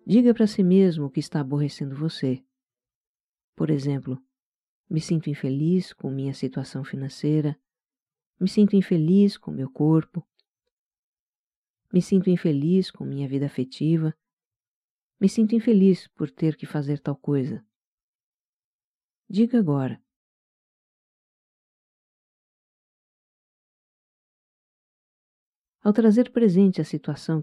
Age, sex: 50-69, female